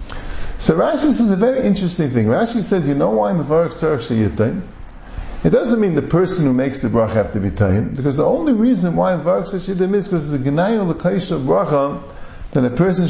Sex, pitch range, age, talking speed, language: male, 125-190 Hz, 50-69, 220 wpm, English